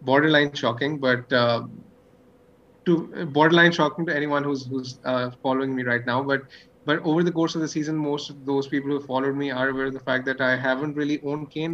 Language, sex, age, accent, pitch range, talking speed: English, male, 30-49, Indian, 130-160 Hz, 225 wpm